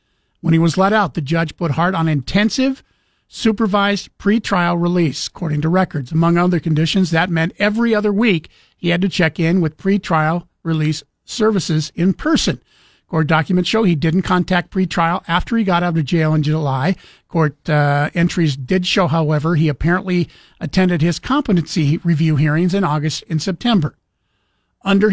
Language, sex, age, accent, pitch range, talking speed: English, male, 50-69, American, 155-185 Hz, 165 wpm